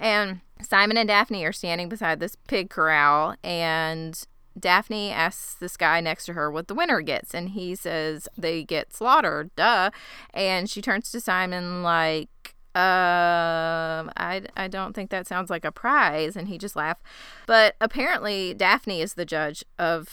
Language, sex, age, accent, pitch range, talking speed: English, female, 20-39, American, 165-210 Hz, 170 wpm